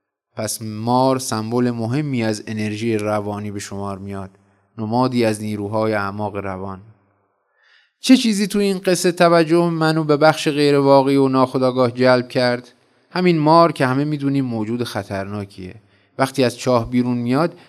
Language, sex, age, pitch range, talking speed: Persian, male, 20-39, 110-135 Hz, 140 wpm